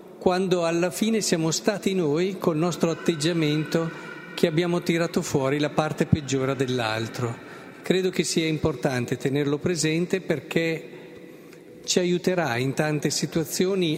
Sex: male